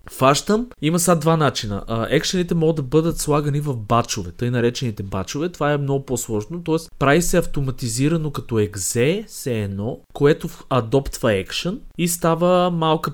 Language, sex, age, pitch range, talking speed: Bulgarian, male, 20-39, 115-165 Hz, 155 wpm